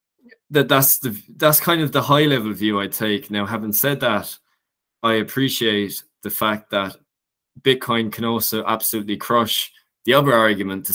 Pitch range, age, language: 95-110 Hz, 20-39, English